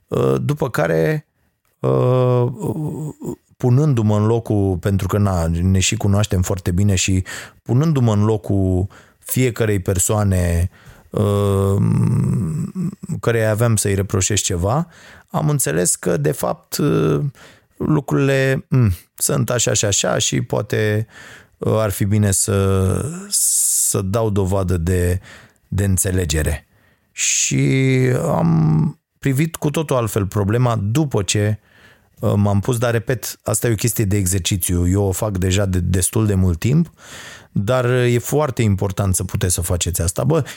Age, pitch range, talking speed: 30-49, 95-125 Hz, 125 wpm